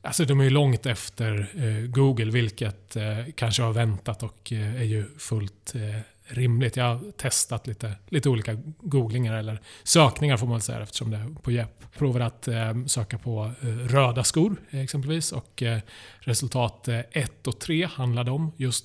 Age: 30-49